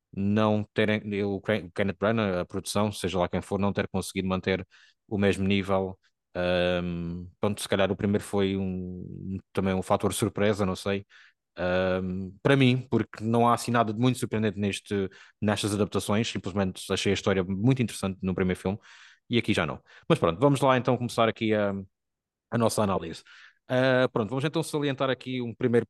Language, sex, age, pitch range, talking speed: Portuguese, male, 20-39, 100-125 Hz, 165 wpm